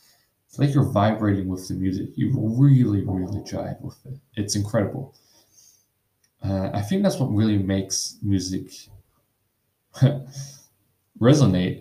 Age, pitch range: 20-39, 100-135 Hz